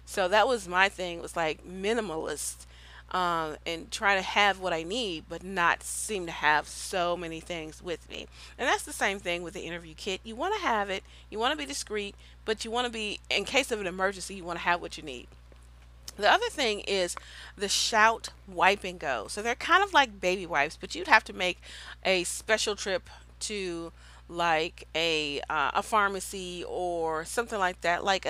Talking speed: 205 wpm